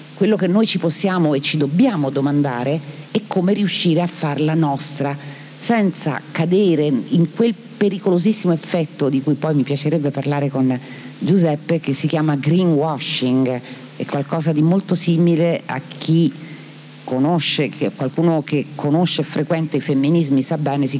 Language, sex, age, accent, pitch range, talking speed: Italian, female, 40-59, native, 140-175 Hz, 150 wpm